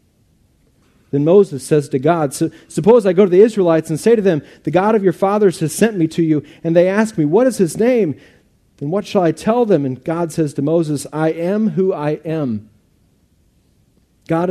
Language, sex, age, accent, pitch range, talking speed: English, male, 40-59, American, 150-190 Hz, 205 wpm